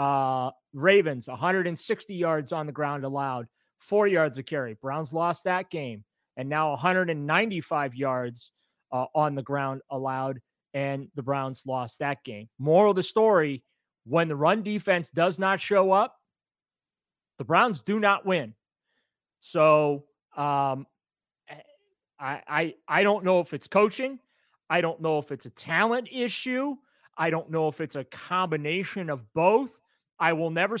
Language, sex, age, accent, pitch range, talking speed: English, male, 30-49, American, 140-180 Hz, 150 wpm